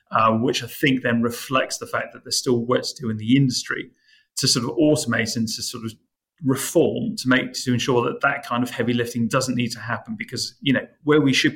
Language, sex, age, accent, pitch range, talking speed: English, male, 30-49, British, 110-130 Hz, 240 wpm